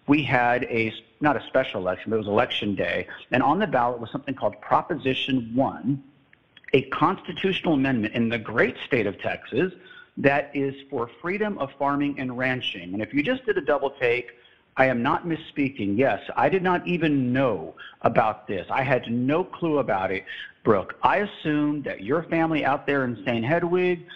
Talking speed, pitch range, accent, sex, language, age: 185 wpm, 120-160 Hz, American, male, English, 50-69